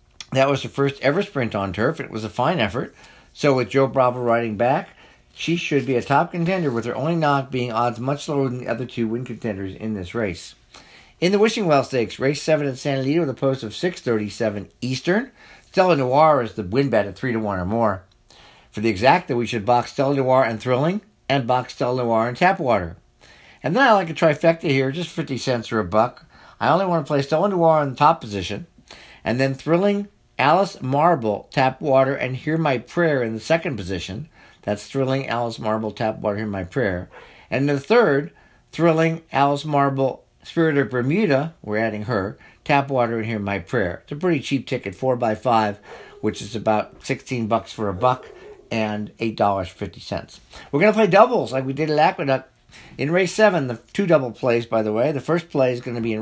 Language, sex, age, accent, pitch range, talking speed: English, male, 50-69, American, 115-150 Hz, 210 wpm